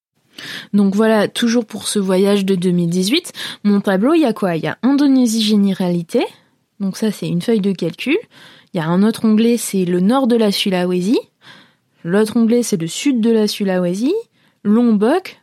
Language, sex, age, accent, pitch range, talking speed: French, female, 20-39, French, 185-255 Hz, 185 wpm